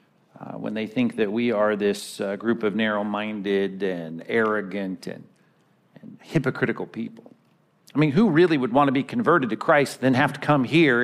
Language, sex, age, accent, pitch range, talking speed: English, male, 50-69, American, 105-140 Hz, 185 wpm